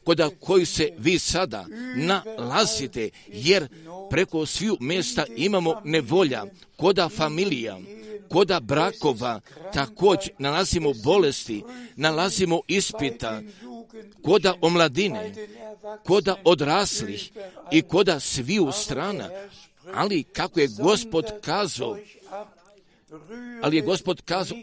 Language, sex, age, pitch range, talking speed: Croatian, male, 50-69, 155-205 Hz, 95 wpm